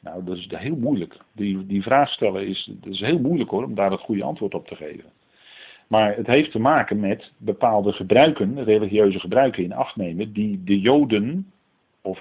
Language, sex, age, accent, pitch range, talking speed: Dutch, male, 50-69, Dutch, 95-105 Hz, 185 wpm